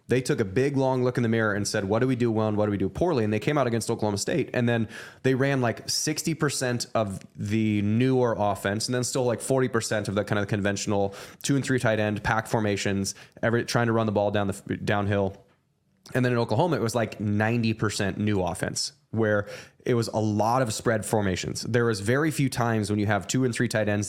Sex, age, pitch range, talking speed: male, 20-39, 105-125 Hz, 250 wpm